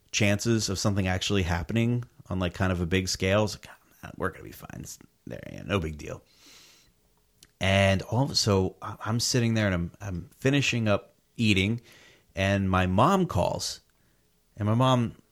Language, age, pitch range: English, 30-49, 95-115 Hz